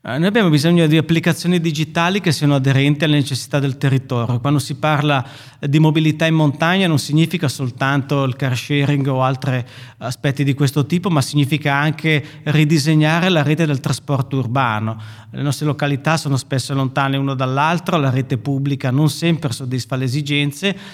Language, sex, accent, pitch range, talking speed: Italian, male, native, 135-155 Hz, 165 wpm